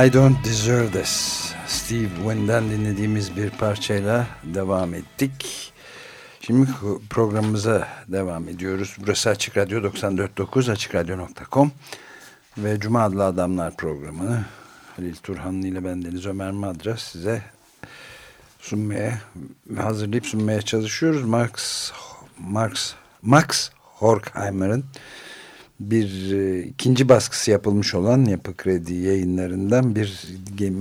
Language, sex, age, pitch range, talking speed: Turkish, male, 60-79, 95-115 Hz, 95 wpm